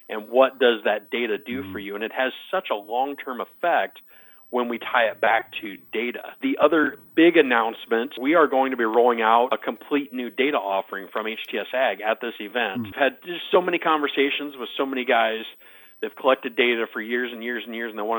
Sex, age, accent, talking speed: male, 40-59, American, 220 wpm